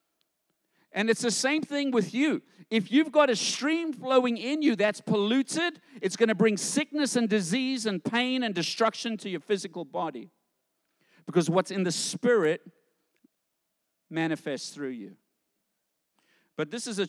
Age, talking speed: 50-69, 155 wpm